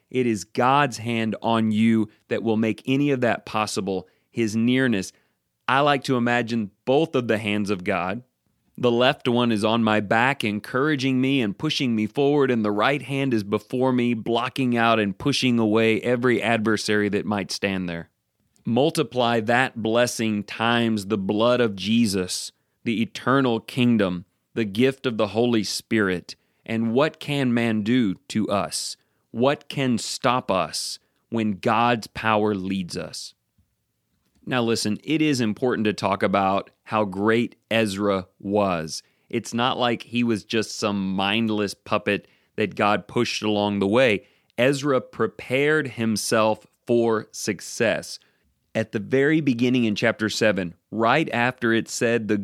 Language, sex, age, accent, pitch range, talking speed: English, male, 30-49, American, 105-125 Hz, 150 wpm